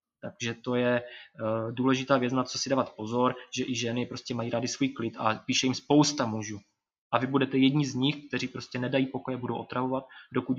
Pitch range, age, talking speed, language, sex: 120-135 Hz, 20-39, 205 wpm, Slovak, male